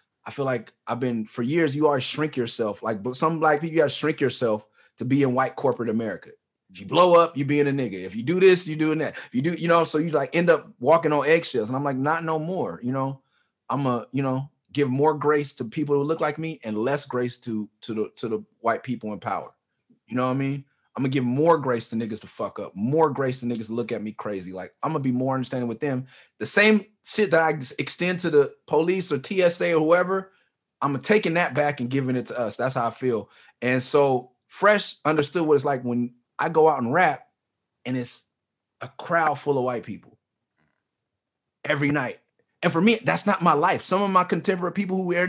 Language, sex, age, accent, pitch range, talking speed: English, male, 30-49, American, 125-170 Hz, 240 wpm